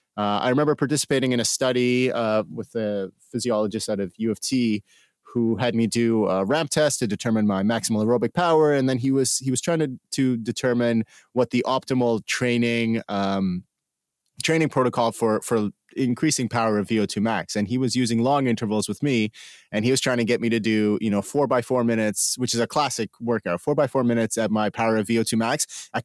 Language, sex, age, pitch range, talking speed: English, male, 30-49, 110-130 Hz, 215 wpm